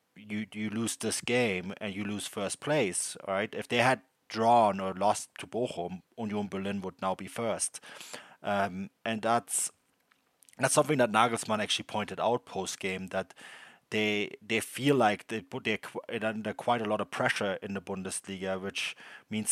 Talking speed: 180 wpm